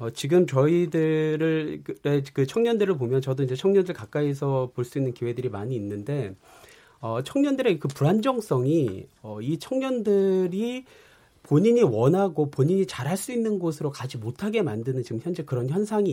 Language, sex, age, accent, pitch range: Korean, male, 40-59, native, 130-200 Hz